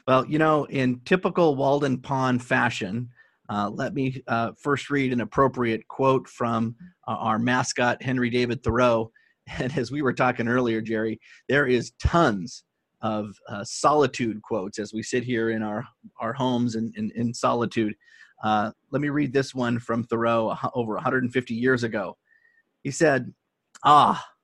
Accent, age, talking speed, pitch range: American, 30-49, 160 wpm, 115-135 Hz